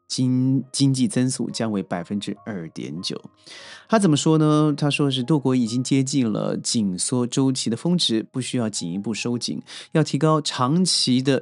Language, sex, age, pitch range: Chinese, male, 30-49, 115-155 Hz